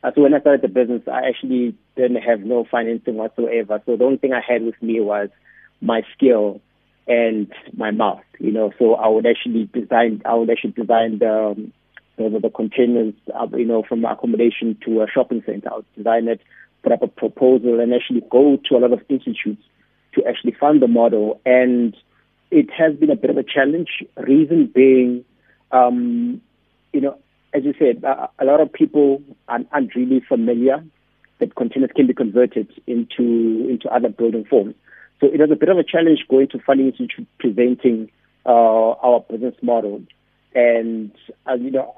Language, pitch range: English, 115-135 Hz